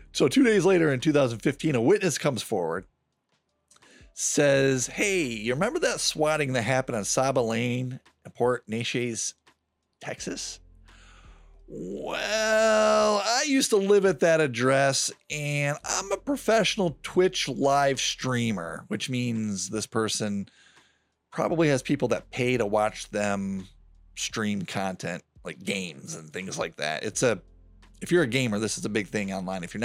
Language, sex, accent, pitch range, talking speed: English, male, American, 105-160 Hz, 150 wpm